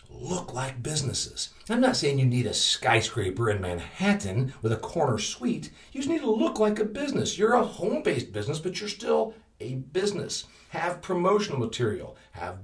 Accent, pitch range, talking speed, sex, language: American, 110-175 Hz, 175 wpm, male, English